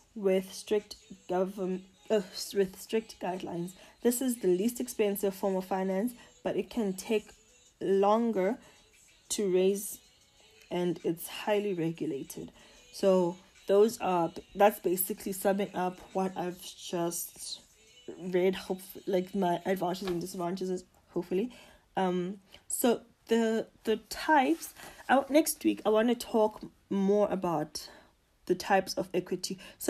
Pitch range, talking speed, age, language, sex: 180-215 Hz, 125 wpm, 20-39, English, female